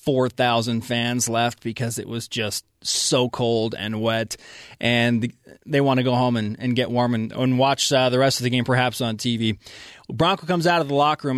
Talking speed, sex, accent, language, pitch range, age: 210 wpm, male, American, English, 115-145 Hz, 20-39